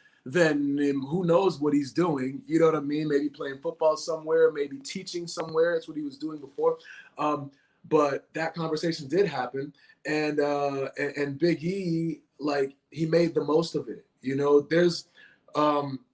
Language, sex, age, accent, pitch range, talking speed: English, male, 20-39, American, 140-165 Hz, 175 wpm